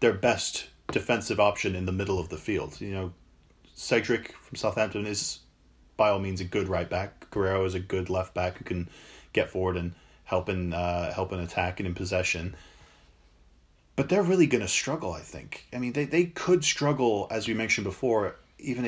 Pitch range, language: 90-115 Hz, English